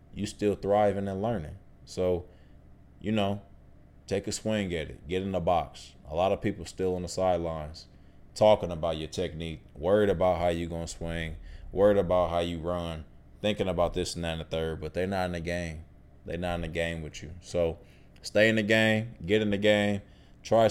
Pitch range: 75-95 Hz